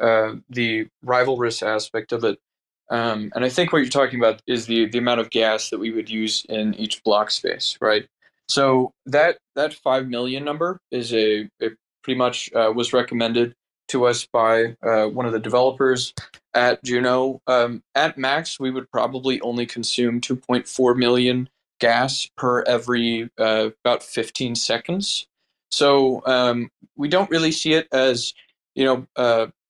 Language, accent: English, American